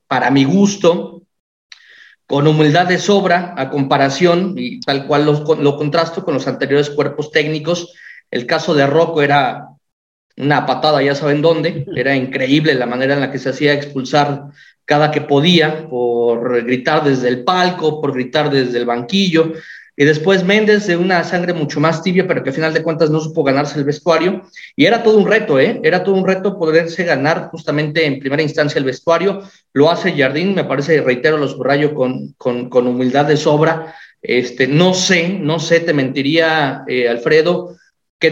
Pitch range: 140-180 Hz